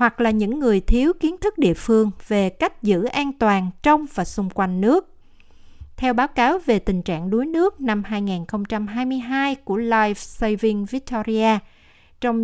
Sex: female